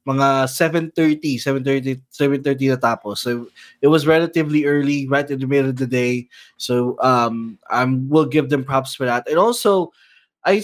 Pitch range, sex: 125-160 Hz, male